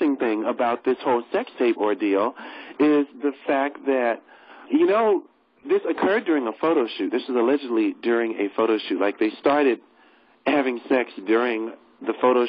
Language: English